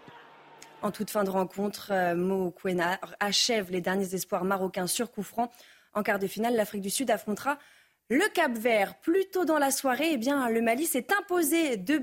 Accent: French